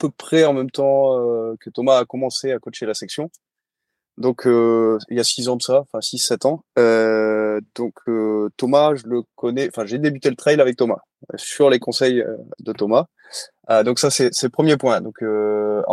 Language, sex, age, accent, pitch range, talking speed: French, male, 20-39, French, 115-140 Hz, 215 wpm